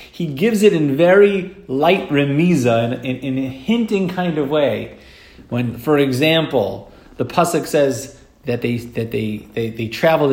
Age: 30-49